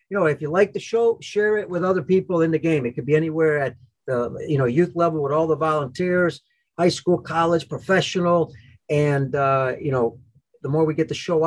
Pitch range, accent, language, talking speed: 135-175 Hz, American, English, 225 wpm